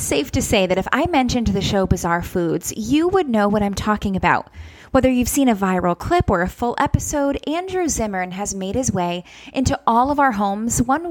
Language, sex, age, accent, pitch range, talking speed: English, female, 10-29, American, 195-265 Hz, 215 wpm